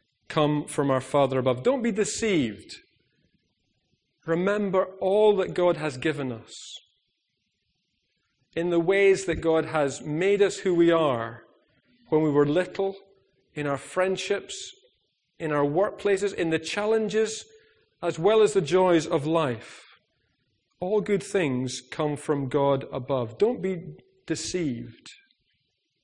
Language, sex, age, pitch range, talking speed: English, male, 40-59, 150-205 Hz, 130 wpm